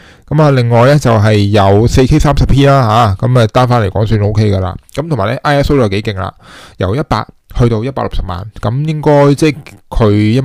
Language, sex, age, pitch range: Chinese, male, 20-39, 100-125 Hz